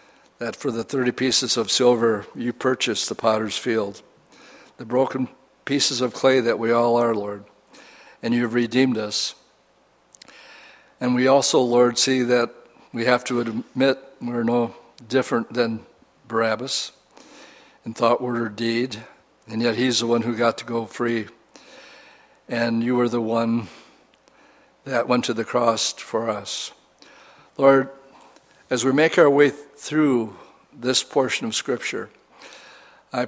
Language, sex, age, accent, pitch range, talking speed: English, male, 60-79, American, 115-130 Hz, 145 wpm